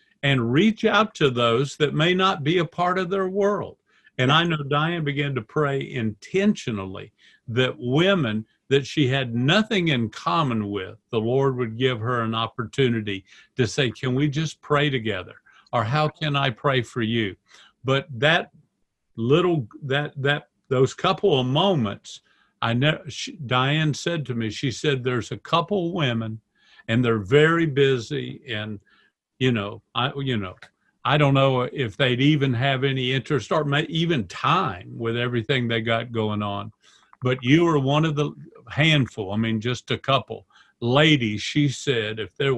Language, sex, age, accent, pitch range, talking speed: English, male, 50-69, American, 115-150 Hz, 165 wpm